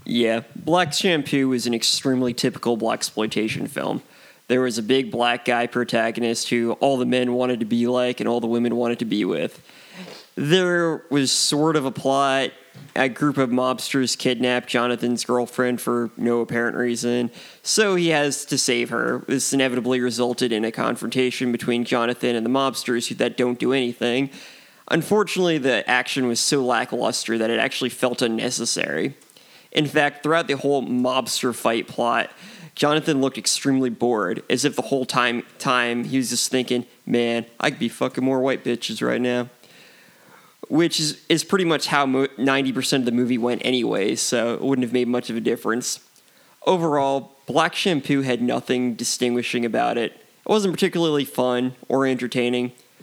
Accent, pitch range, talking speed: American, 120-135 Hz, 170 wpm